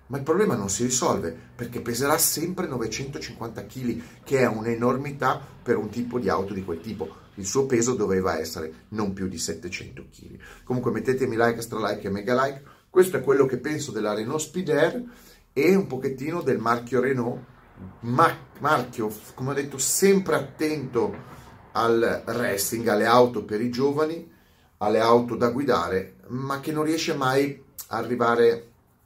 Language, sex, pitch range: Italian, male, 105-135 Hz